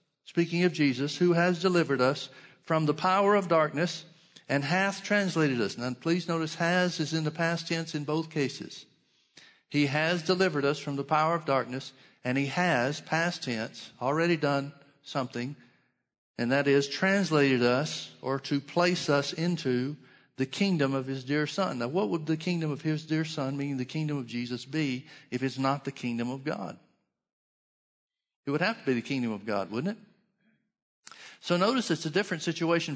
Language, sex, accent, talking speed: English, male, American, 180 wpm